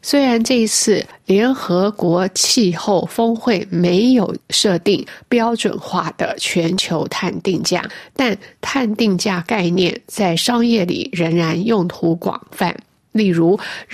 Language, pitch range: Chinese, 180-230 Hz